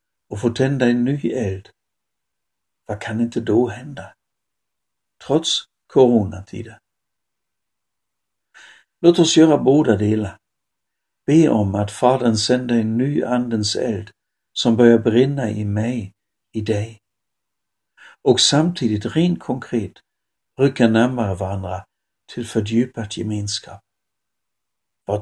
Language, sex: Swedish, male